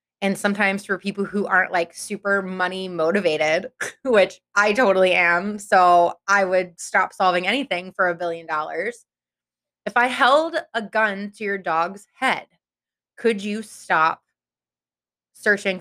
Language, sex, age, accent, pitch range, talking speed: English, female, 20-39, American, 175-210 Hz, 140 wpm